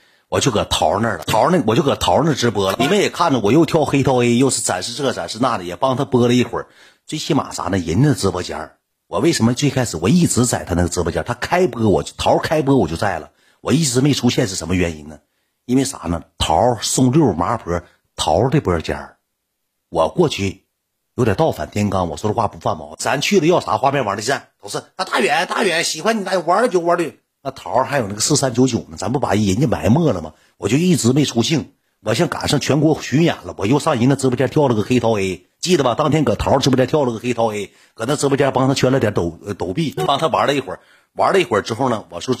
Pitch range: 95-140 Hz